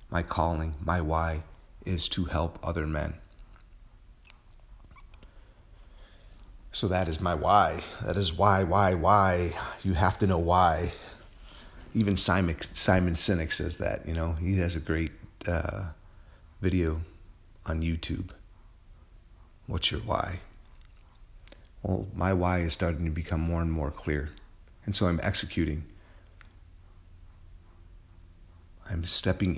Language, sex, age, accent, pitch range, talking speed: English, male, 40-59, American, 80-95 Hz, 120 wpm